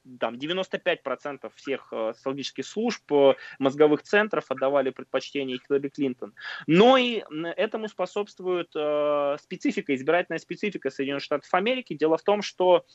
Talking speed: 105 wpm